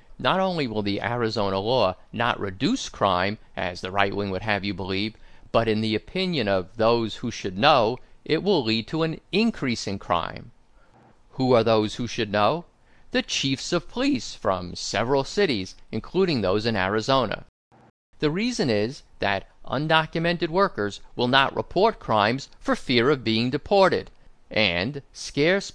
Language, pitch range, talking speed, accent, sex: English, 105-150 Hz, 155 wpm, American, male